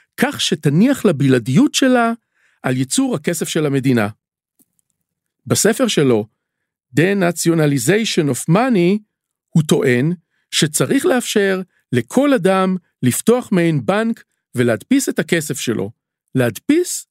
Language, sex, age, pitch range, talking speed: Hebrew, male, 50-69, 140-215 Hz, 100 wpm